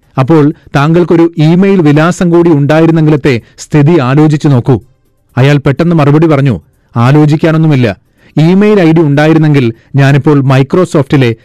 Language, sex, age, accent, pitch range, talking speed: Malayalam, male, 30-49, native, 135-170 Hz, 105 wpm